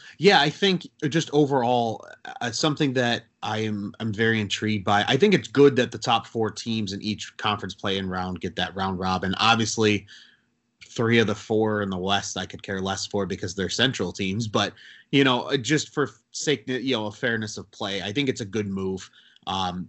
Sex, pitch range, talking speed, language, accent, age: male, 105-140 Hz, 210 wpm, English, American, 30-49